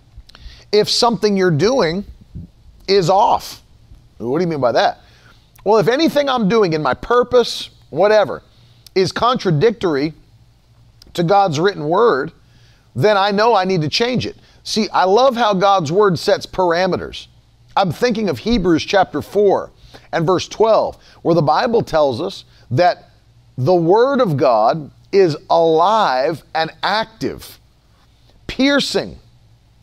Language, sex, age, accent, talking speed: English, male, 40-59, American, 135 wpm